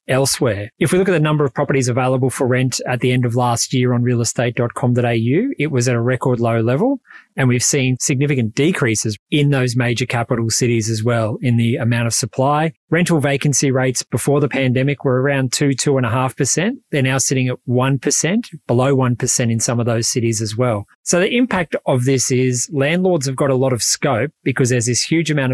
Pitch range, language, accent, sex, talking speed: 125-145 Hz, English, Australian, male, 200 wpm